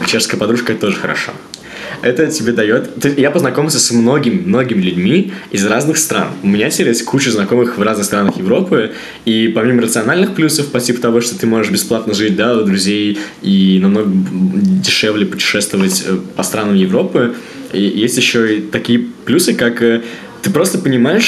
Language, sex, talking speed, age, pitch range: Russian, male, 165 wpm, 20-39, 110-155 Hz